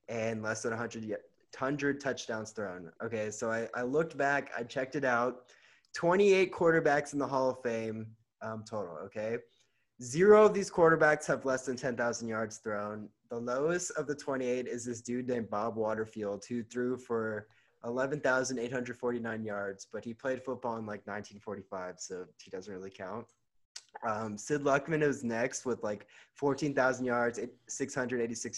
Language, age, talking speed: English, 20-39, 155 wpm